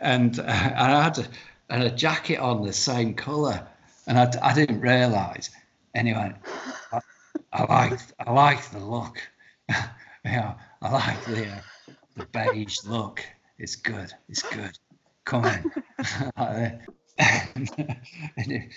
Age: 50-69